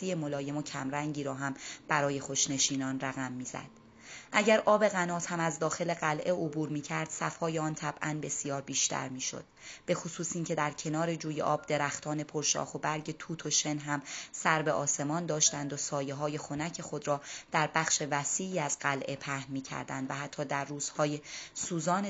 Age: 20-39